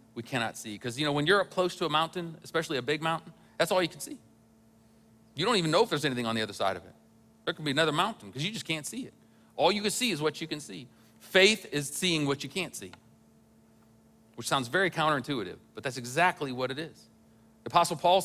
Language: English